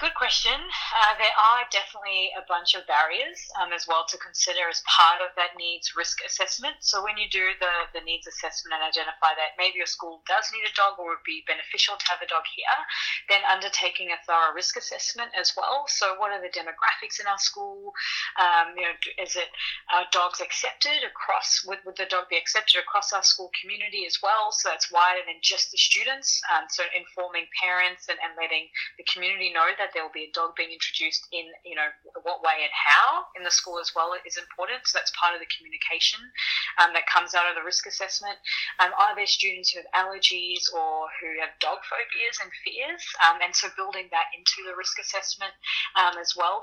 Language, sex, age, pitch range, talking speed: English, female, 30-49, 170-200 Hz, 210 wpm